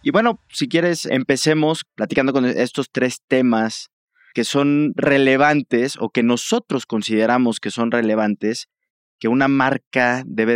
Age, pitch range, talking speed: 20-39, 110-150 Hz, 135 wpm